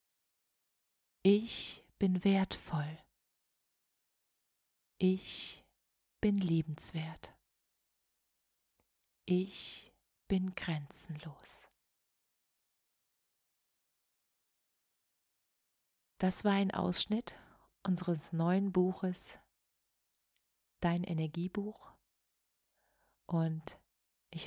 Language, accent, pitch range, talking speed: German, German, 160-185 Hz, 50 wpm